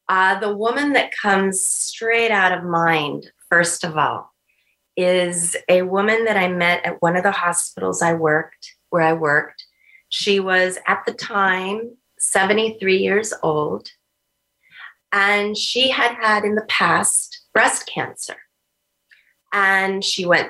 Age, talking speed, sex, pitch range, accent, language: 30-49, 140 wpm, female, 180-215 Hz, American, English